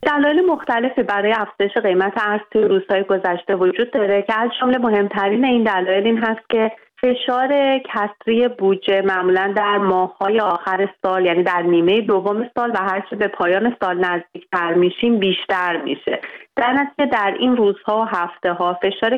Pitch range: 185-225 Hz